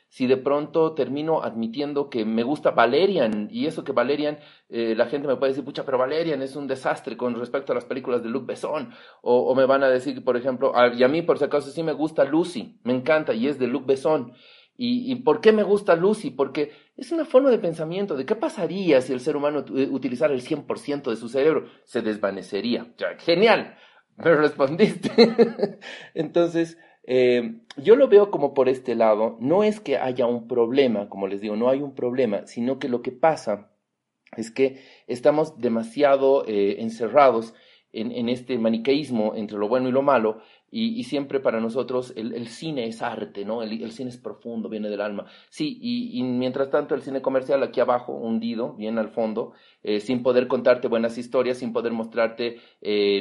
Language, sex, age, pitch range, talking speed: Spanish, male, 40-59, 115-150 Hz, 200 wpm